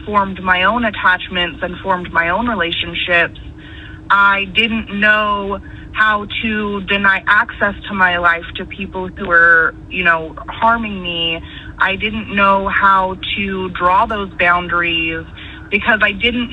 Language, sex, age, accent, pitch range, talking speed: English, female, 20-39, American, 175-205 Hz, 140 wpm